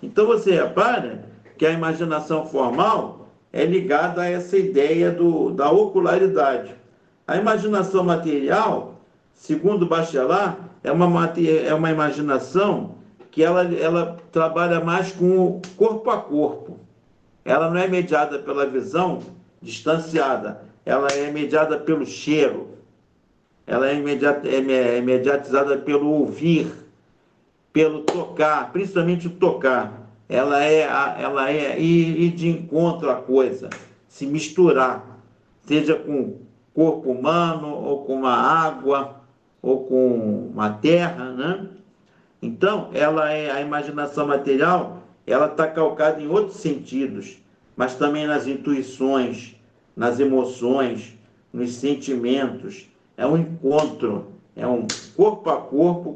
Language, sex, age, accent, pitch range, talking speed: Portuguese, male, 50-69, Brazilian, 135-170 Hz, 115 wpm